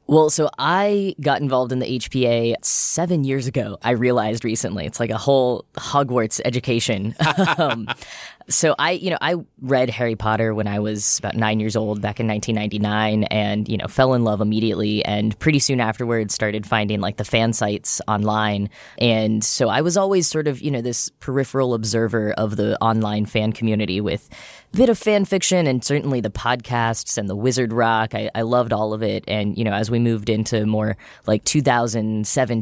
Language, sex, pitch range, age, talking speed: English, female, 110-130 Hz, 10-29, 195 wpm